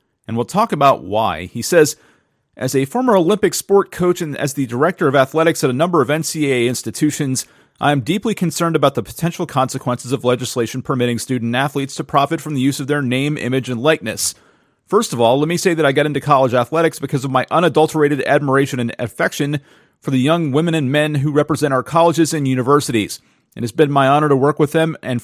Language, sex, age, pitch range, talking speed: English, male, 40-59, 125-155 Hz, 215 wpm